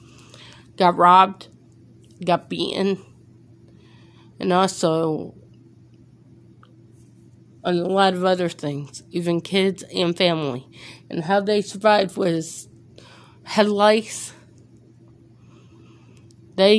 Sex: female